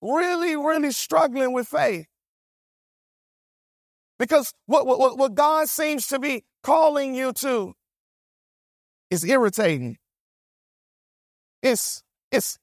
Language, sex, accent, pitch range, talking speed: English, male, American, 200-290 Hz, 95 wpm